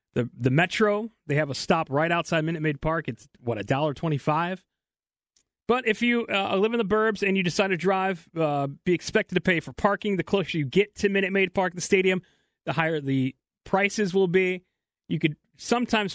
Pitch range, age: 150-195 Hz, 30-49